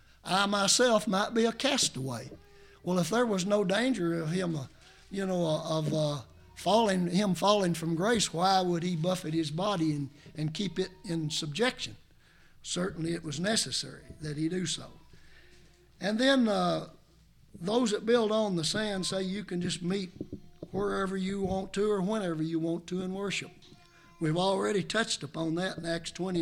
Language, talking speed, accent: English, 175 wpm, American